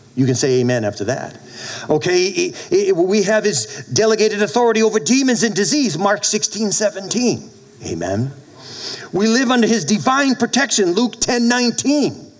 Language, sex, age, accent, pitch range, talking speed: English, male, 50-69, American, 125-195 Hz, 140 wpm